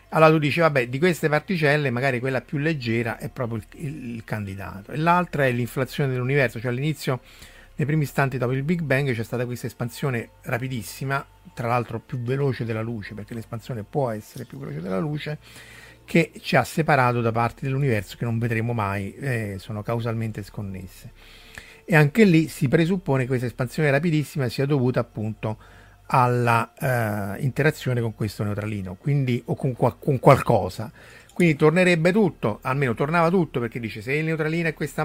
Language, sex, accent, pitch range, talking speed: Italian, male, native, 115-145 Hz, 175 wpm